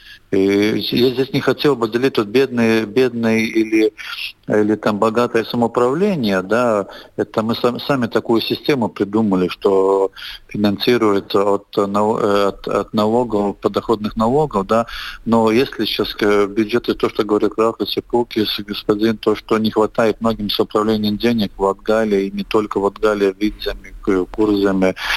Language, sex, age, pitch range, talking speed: Russian, male, 40-59, 105-120 Hz, 155 wpm